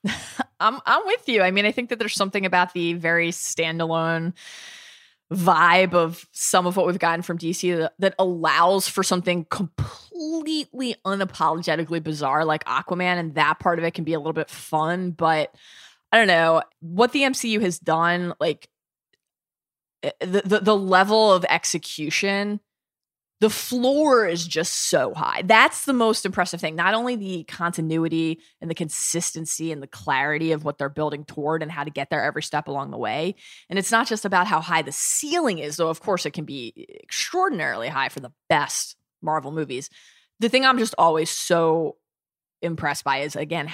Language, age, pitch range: English, 20-39, 160-200 Hz